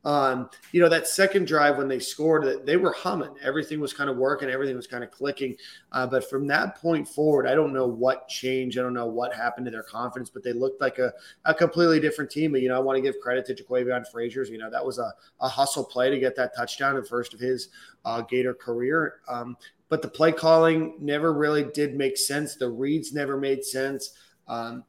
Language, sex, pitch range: English, male, 125-145 Hz